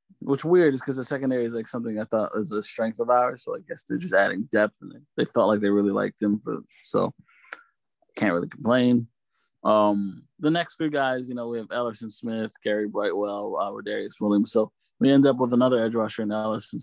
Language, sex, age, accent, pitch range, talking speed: English, male, 20-39, American, 105-125 Hz, 225 wpm